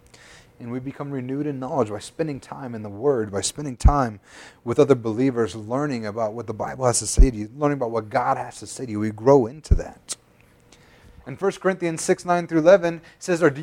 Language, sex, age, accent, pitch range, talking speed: English, male, 30-49, American, 115-155 Hz, 225 wpm